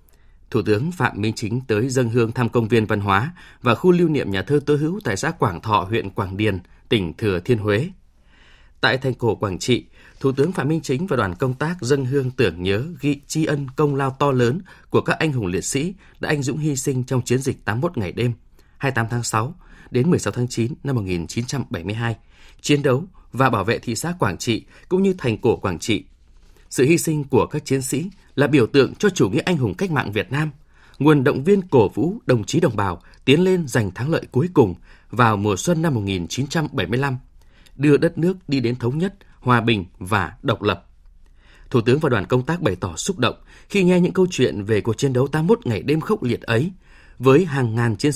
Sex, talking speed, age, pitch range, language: male, 225 wpm, 20-39, 110-155 Hz, Vietnamese